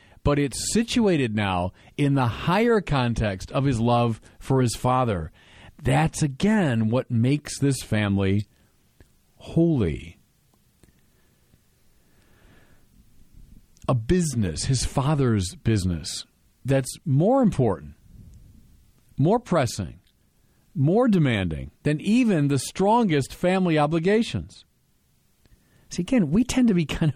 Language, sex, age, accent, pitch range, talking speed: English, male, 40-59, American, 100-150 Hz, 100 wpm